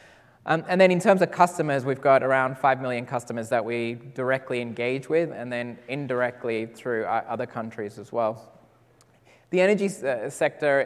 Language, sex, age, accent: English, male, 20-39, Australian